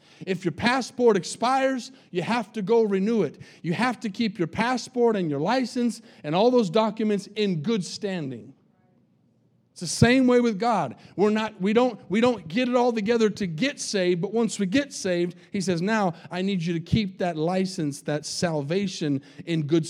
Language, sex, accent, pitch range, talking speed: English, male, American, 165-215 Hz, 195 wpm